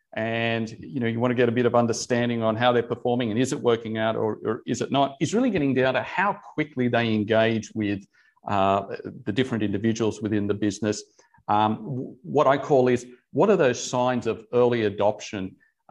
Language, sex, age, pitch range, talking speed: English, male, 50-69, 110-135 Hz, 205 wpm